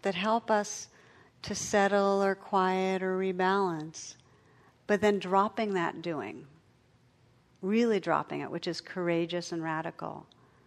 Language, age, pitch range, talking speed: English, 50-69, 175-205 Hz, 125 wpm